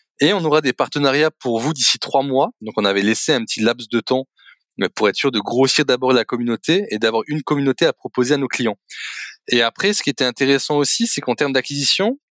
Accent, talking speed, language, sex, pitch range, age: French, 230 wpm, French, male, 130-185 Hz, 20-39